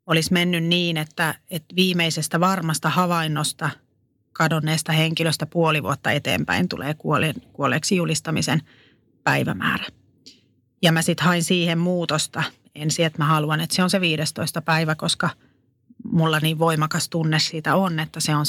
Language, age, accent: Finnish, 30-49, native